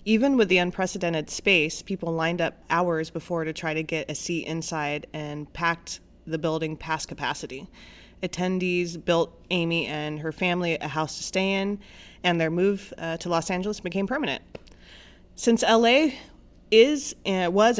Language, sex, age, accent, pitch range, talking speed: English, female, 30-49, American, 160-200 Hz, 160 wpm